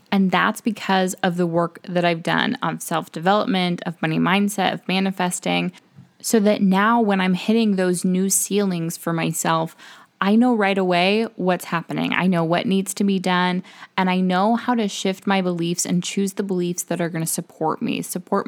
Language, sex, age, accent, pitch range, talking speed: English, female, 20-39, American, 175-200 Hz, 190 wpm